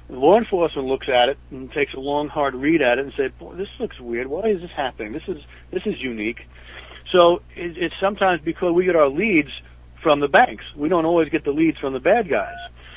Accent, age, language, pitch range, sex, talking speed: American, 60-79, English, 120-155 Hz, male, 220 wpm